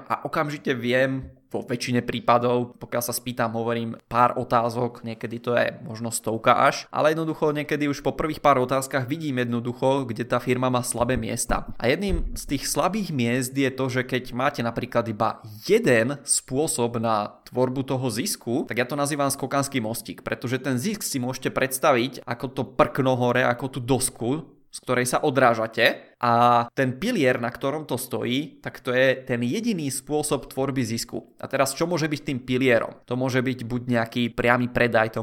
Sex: male